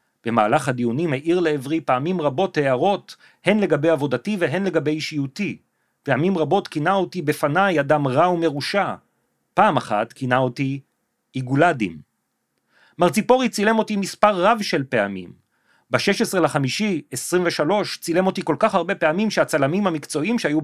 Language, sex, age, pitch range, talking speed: Hebrew, male, 40-59, 130-175 Hz, 125 wpm